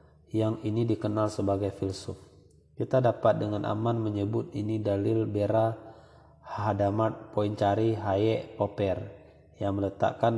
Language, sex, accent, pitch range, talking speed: Indonesian, male, native, 100-110 Hz, 110 wpm